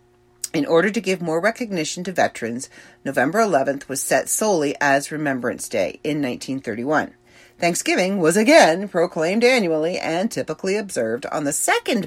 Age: 50-69